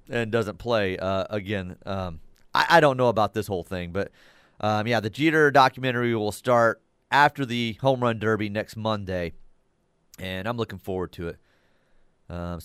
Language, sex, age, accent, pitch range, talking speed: English, male, 30-49, American, 95-125 Hz, 170 wpm